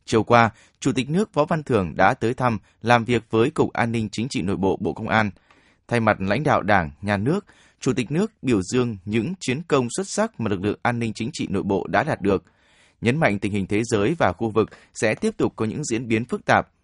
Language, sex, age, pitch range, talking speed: Vietnamese, male, 20-39, 100-140 Hz, 255 wpm